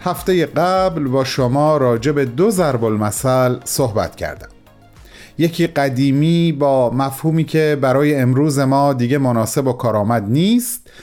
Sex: male